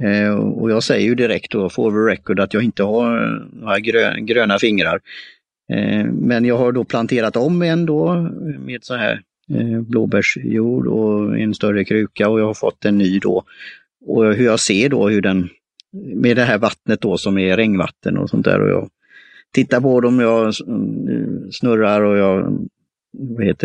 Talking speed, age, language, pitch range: 165 wpm, 30-49, Swedish, 105-130 Hz